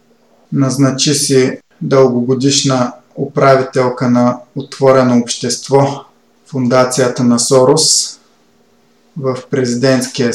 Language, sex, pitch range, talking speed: Bulgarian, male, 125-135 Hz, 70 wpm